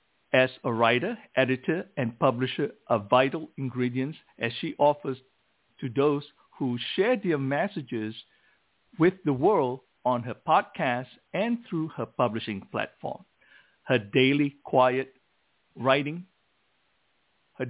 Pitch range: 120-160 Hz